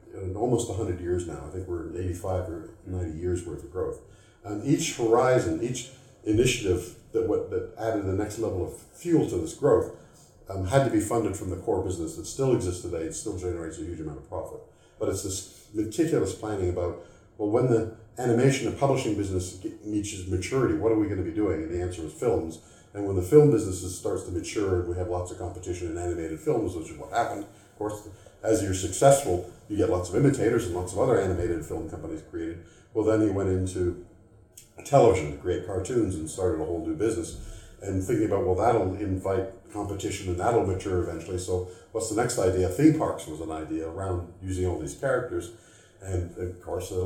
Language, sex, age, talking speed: English, male, 50-69, 210 wpm